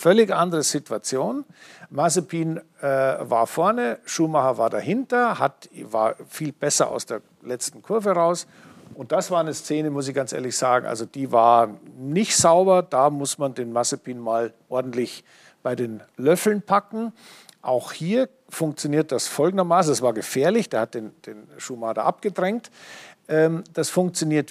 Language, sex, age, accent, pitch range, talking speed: German, male, 50-69, German, 125-175 Hz, 150 wpm